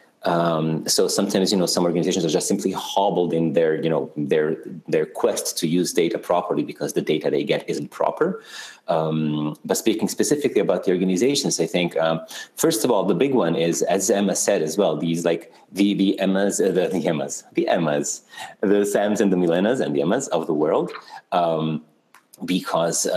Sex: male